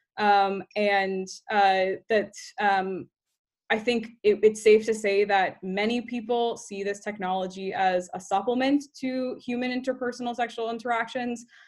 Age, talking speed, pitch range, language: 20-39, 135 wpm, 195-220 Hz, English